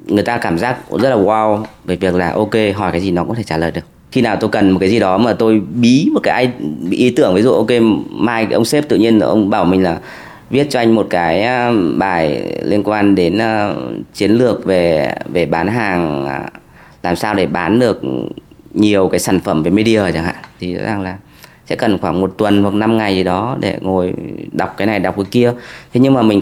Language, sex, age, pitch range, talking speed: Vietnamese, female, 20-39, 95-115 Hz, 230 wpm